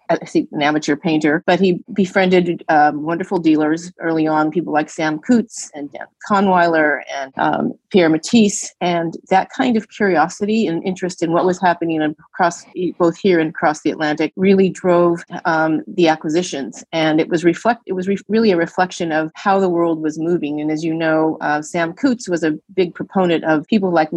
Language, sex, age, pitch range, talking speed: English, female, 30-49, 155-185 Hz, 190 wpm